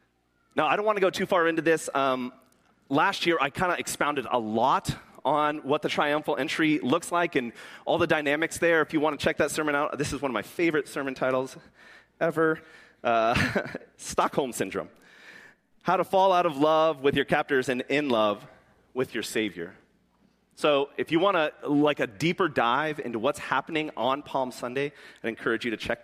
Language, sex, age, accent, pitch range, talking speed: English, male, 30-49, American, 140-185 Hz, 200 wpm